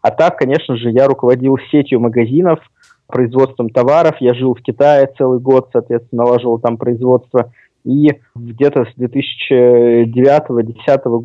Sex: male